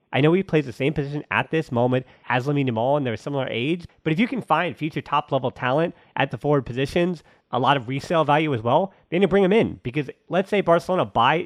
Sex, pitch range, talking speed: male, 130-165 Hz, 235 wpm